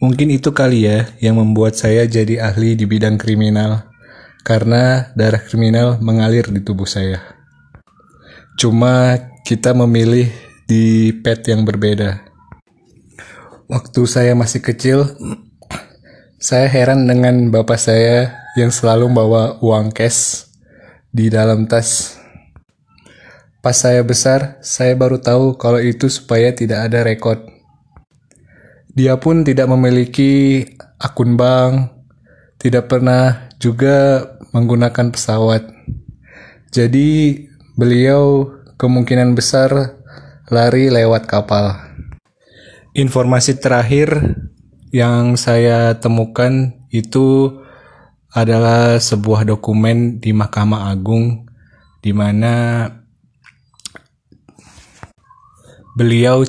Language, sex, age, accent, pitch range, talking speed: Indonesian, male, 20-39, native, 110-130 Hz, 90 wpm